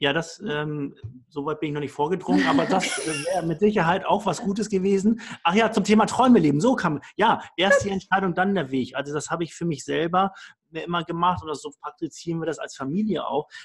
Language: German